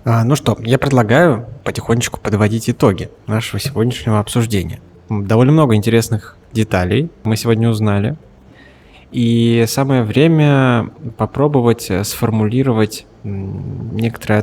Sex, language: male, Russian